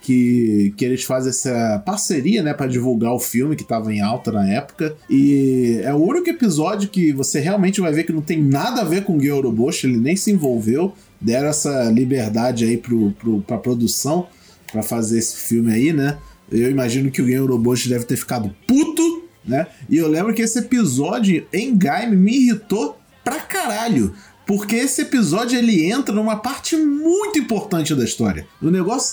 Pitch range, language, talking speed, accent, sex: 130-220 Hz, Portuguese, 185 wpm, Brazilian, male